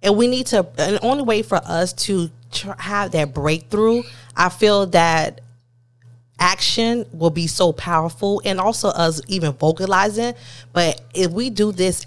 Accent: American